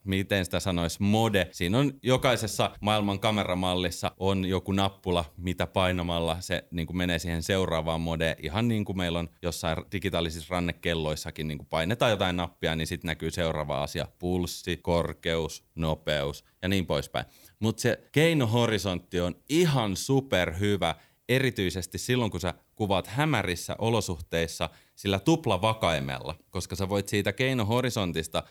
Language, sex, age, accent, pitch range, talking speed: Finnish, male, 30-49, native, 85-120 Hz, 135 wpm